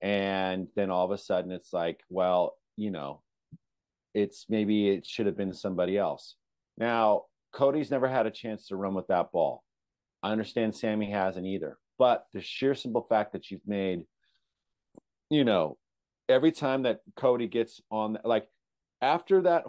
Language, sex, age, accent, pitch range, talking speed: English, male, 40-59, American, 100-130 Hz, 165 wpm